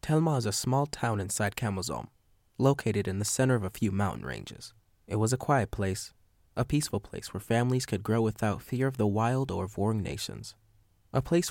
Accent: American